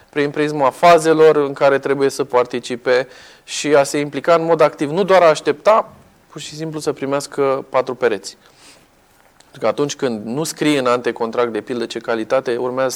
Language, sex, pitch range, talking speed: Romanian, male, 135-170 Hz, 180 wpm